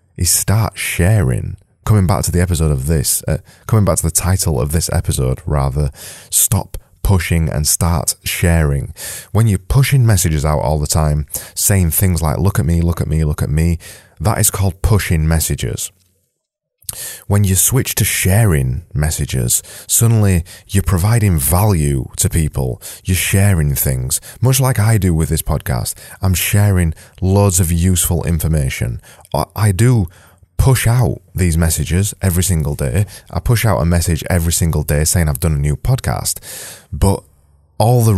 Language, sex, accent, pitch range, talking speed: English, male, British, 80-100 Hz, 165 wpm